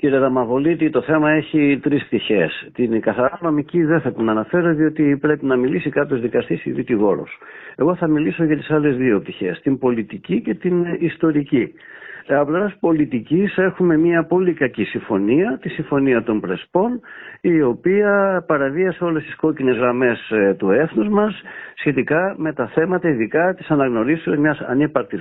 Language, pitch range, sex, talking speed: Greek, 125-165 Hz, male, 155 wpm